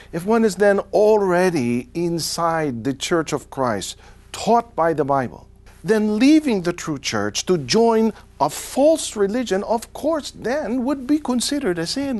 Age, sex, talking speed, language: 50-69, male, 155 wpm, English